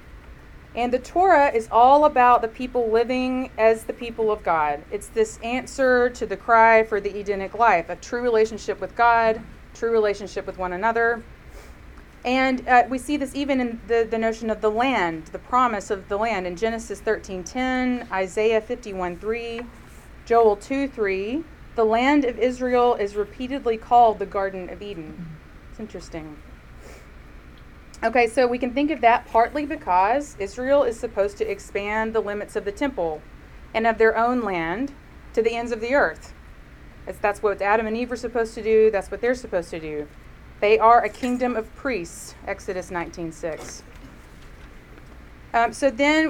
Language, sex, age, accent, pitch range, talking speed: English, female, 30-49, American, 190-245 Hz, 170 wpm